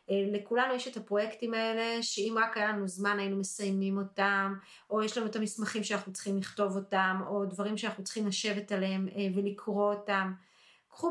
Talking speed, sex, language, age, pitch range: 165 wpm, female, Hebrew, 30-49, 195-230 Hz